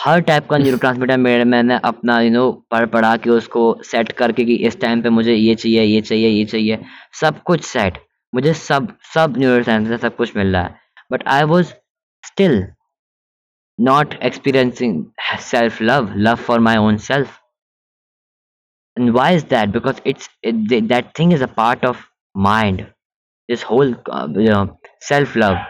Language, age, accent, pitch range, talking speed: Hindi, 20-39, native, 110-130 Hz, 155 wpm